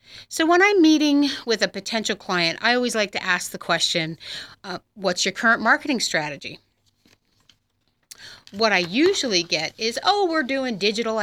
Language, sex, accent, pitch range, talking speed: English, female, American, 175-230 Hz, 160 wpm